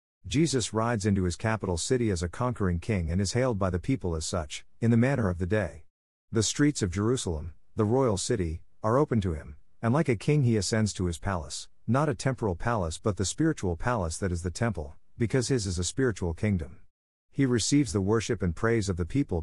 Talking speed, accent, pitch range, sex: 220 wpm, American, 90-115 Hz, male